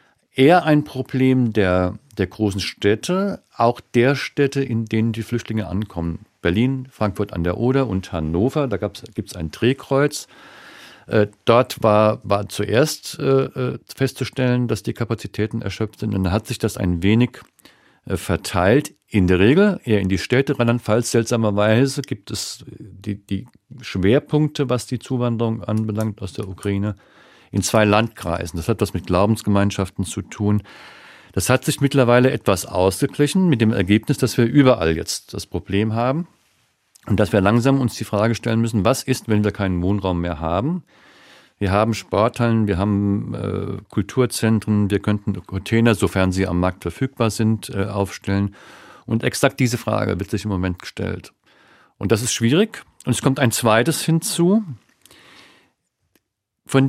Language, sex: German, male